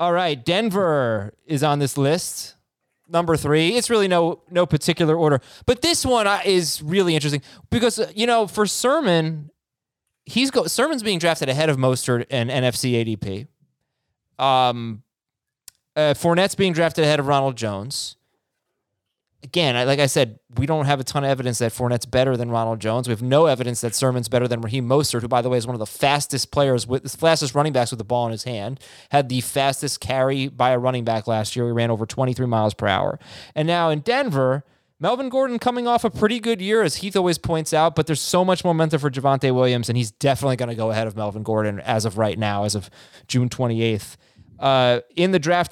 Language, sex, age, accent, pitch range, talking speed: English, male, 20-39, American, 125-170 Hz, 205 wpm